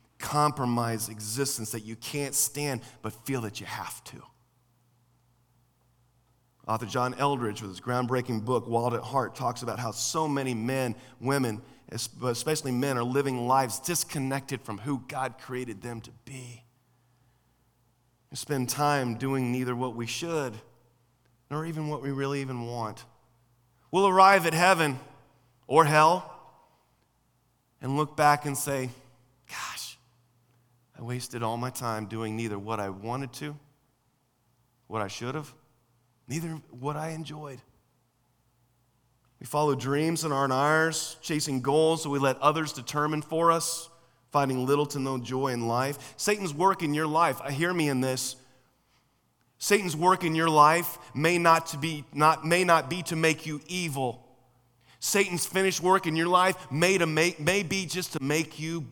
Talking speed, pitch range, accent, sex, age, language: 155 wpm, 120-155 Hz, American, male, 30-49, English